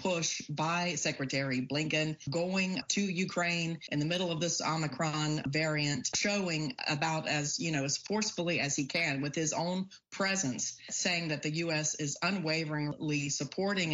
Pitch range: 145-180 Hz